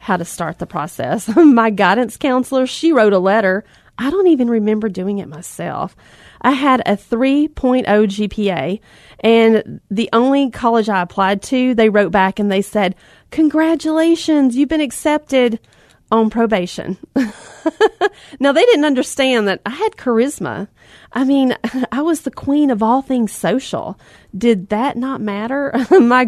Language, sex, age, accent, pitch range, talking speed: English, female, 30-49, American, 215-275 Hz, 150 wpm